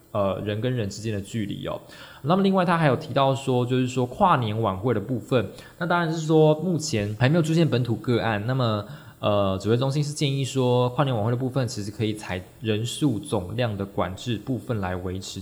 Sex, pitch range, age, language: male, 105-140 Hz, 20-39, Chinese